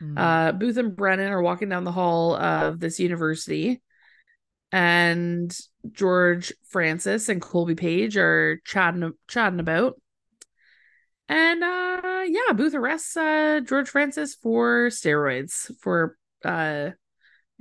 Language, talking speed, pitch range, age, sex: English, 115 wpm, 170-245 Hz, 20-39, female